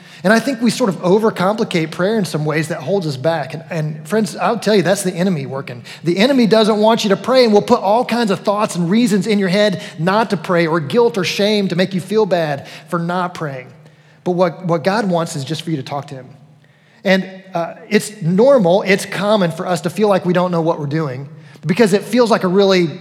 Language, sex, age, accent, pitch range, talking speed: English, male, 30-49, American, 165-205 Hz, 250 wpm